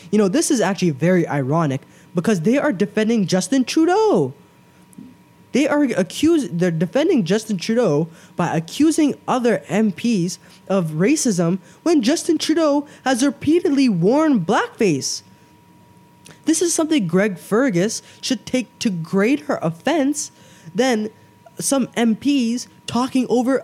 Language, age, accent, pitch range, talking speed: English, 20-39, American, 170-240 Hz, 120 wpm